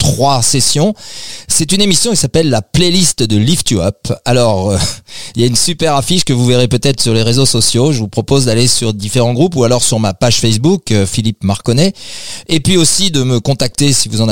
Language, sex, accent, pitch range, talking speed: French, male, French, 115-155 Hz, 225 wpm